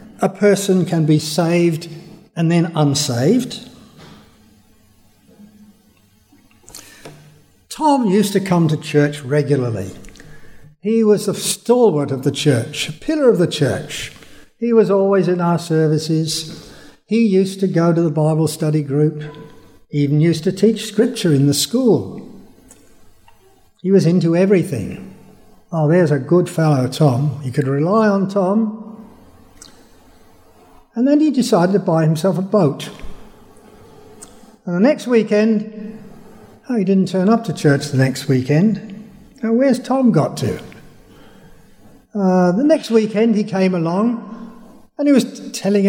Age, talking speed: 60-79, 140 wpm